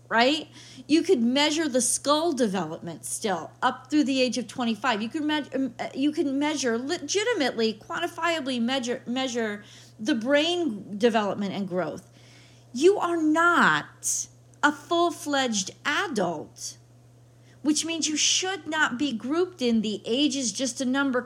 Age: 40-59